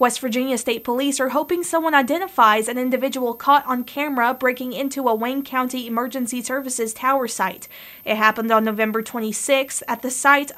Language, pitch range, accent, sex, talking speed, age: English, 235-275 Hz, American, female, 170 wpm, 20-39